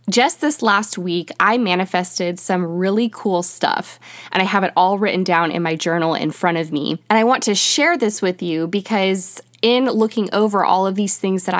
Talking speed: 210 wpm